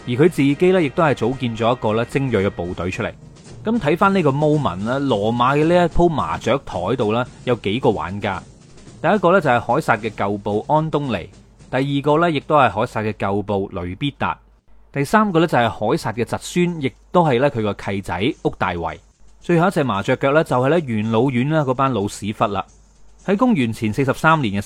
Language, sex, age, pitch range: Chinese, male, 30-49, 105-150 Hz